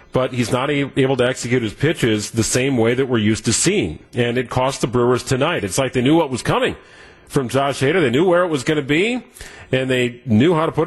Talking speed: 255 wpm